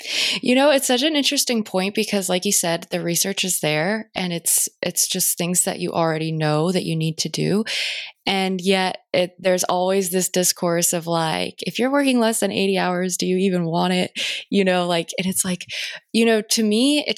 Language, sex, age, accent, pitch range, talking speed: English, female, 20-39, American, 175-210 Hz, 215 wpm